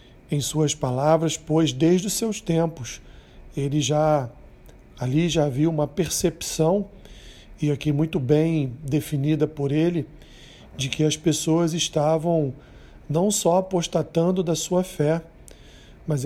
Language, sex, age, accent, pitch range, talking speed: Portuguese, male, 40-59, Brazilian, 140-170 Hz, 125 wpm